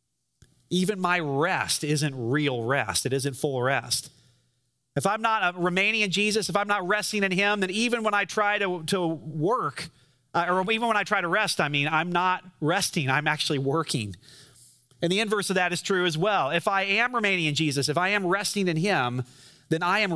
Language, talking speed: English, 210 wpm